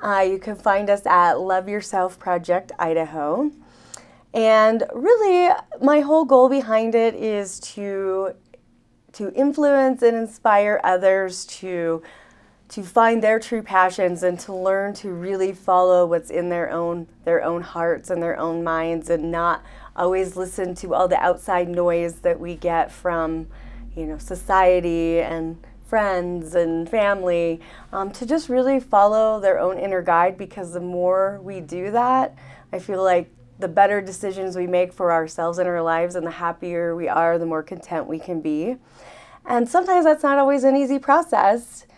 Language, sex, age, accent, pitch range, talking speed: English, female, 30-49, American, 175-220 Hz, 165 wpm